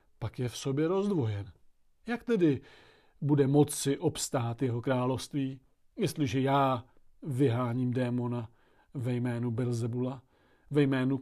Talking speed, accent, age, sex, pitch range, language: 110 wpm, native, 40-59, male, 125-155 Hz, Czech